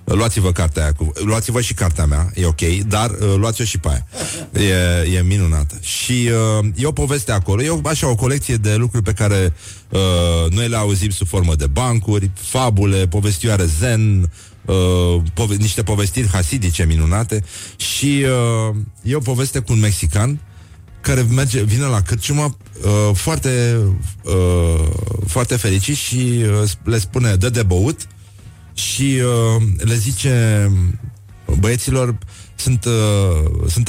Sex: male